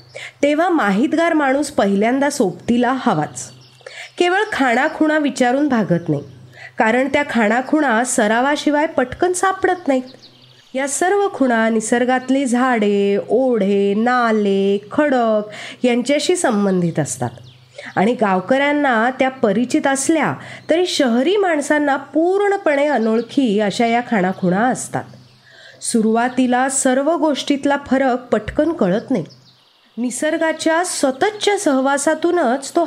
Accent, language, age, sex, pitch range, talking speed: native, Marathi, 30-49, female, 215-300 Hz, 100 wpm